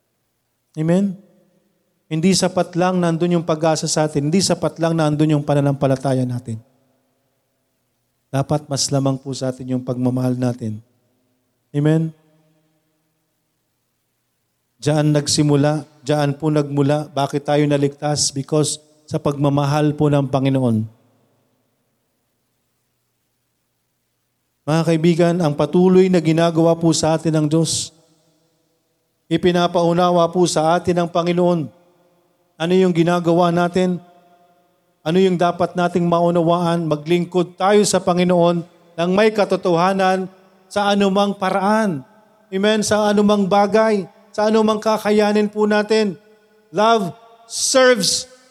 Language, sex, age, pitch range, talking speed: Filipino, male, 40-59, 145-190 Hz, 110 wpm